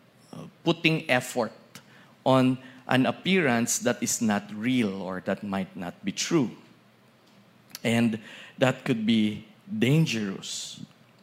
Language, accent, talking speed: English, Filipino, 105 wpm